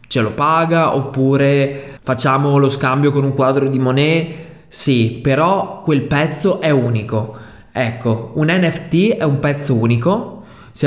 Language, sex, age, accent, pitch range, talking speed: Italian, male, 20-39, native, 135-160 Hz, 145 wpm